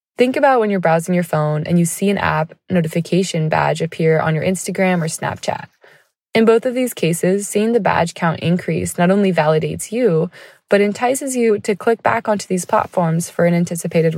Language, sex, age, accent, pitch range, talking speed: English, female, 20-39, American, 165-215 Hz, 195 wpm